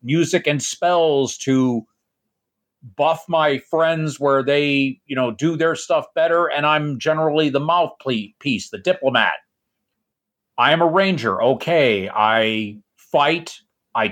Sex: male